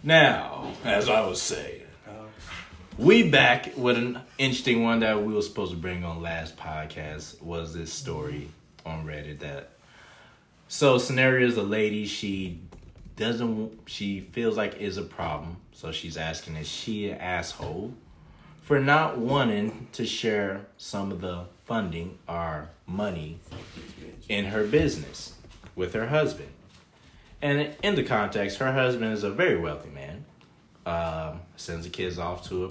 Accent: American